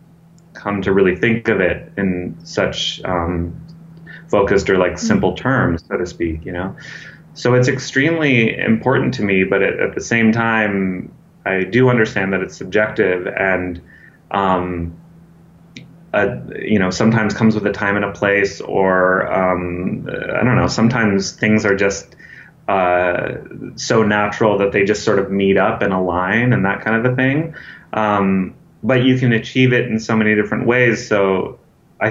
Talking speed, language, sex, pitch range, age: 165 wpm, English, male, 95-125 Hz, 30-49